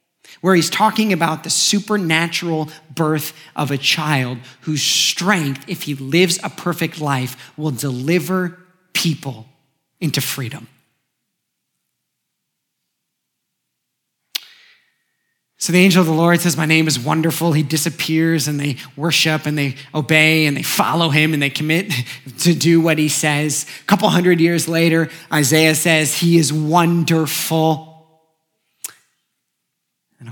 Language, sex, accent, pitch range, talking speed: English, male, American, 155-195 Hz, 130 wpm